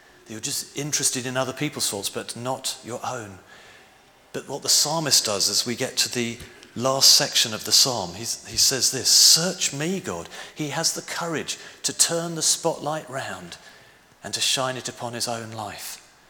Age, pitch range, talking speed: 40-59, 110-150 Hz, 180 wpm